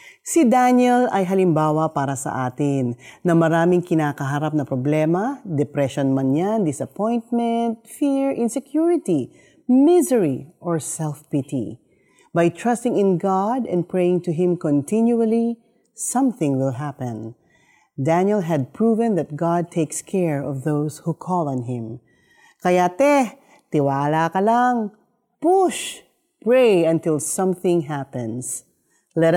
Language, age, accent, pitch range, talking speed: Filipino, 40-59, native, 150-230 Hz, 115 wpm